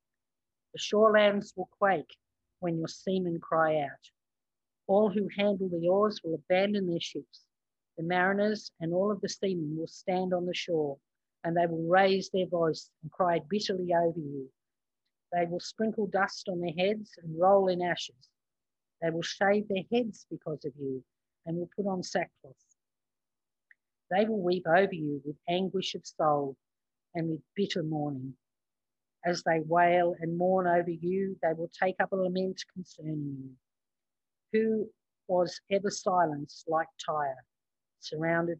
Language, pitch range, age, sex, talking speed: English, 155-190 Hz, 50-69, female, 155 wpm